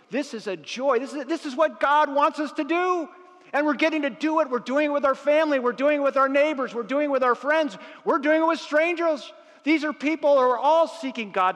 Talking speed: 260 wpm